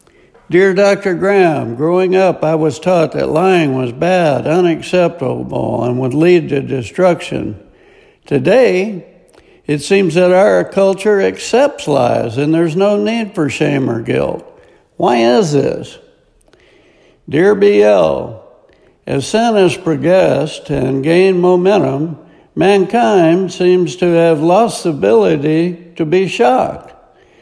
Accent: American